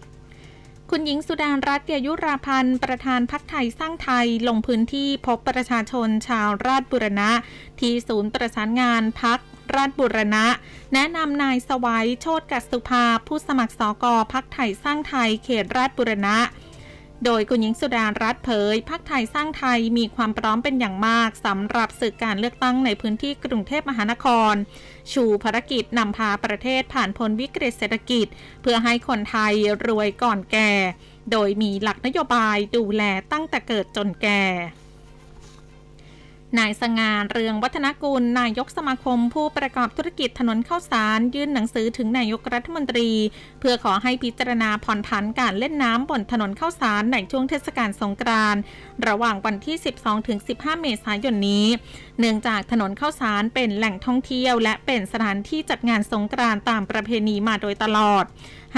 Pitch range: 215-260 Hz